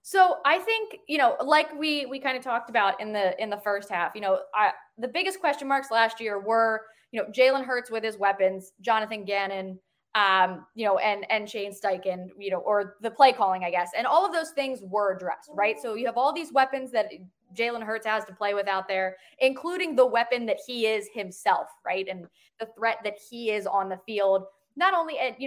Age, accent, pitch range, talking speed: 20-39, American, 195-250 Hz, 225 wpm